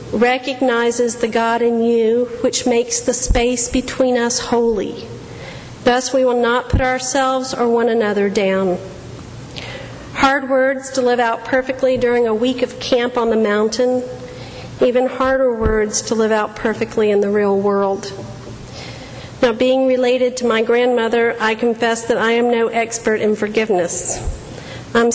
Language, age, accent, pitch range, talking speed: English, 50-69, American, 220-255 Hz, 150 wpm